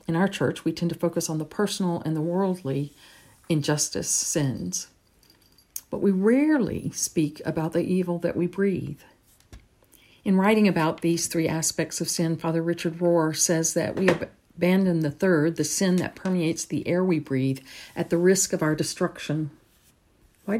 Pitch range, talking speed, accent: 160-190 Hz, 165 wpm, American